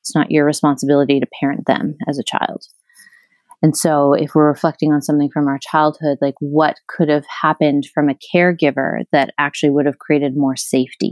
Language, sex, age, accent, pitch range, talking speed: English, female, 30-49, American, 145-165 Hz, 190 wpm